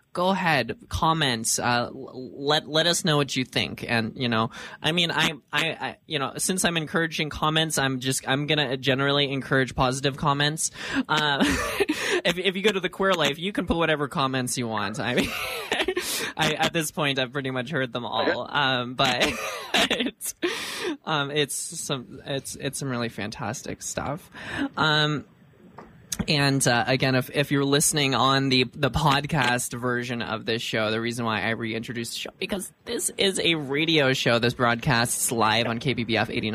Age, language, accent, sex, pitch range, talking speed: 20-39, English, American, male, 115-150 Hz, 175 wpm